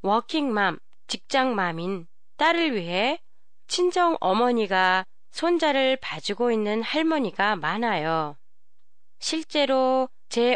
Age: 20-39